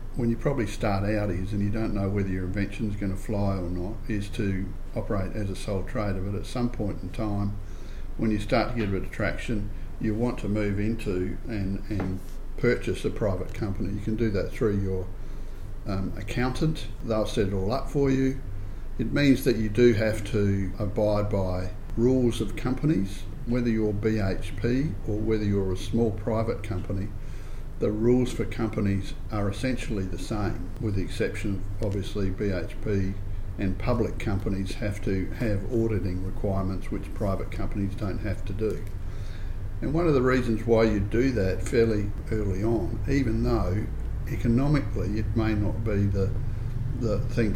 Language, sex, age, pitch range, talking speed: English, male, 50-69, 95-115 Hz, 175 wpm